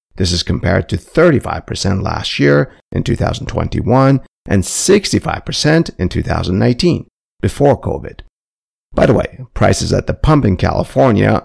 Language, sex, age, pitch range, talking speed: English, male, 50-69, 95-135 Hz, 125 wpm